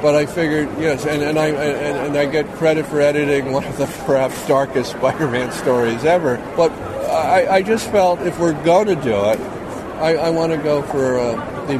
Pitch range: 115-150 Hz